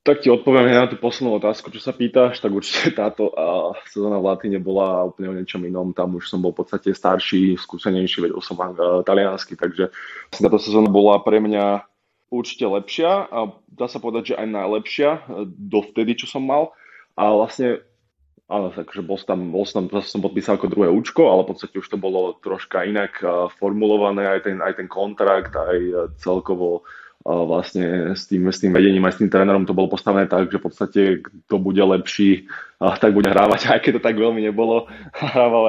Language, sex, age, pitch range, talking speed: Slovak, male, 20-39, 95-105 Hz, 200 wpm